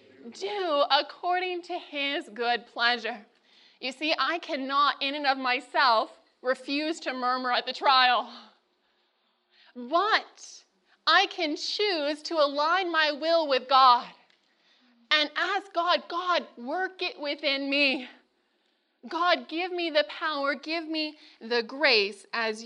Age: 20-39